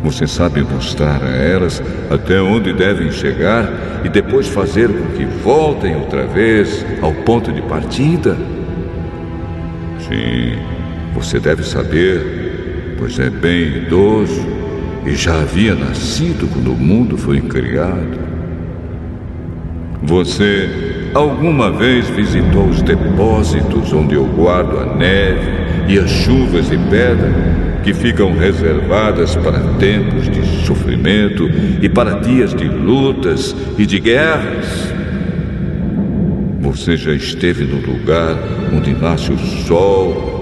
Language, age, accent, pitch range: Portuguese, 60-79, Brazilian, 80-105 Hz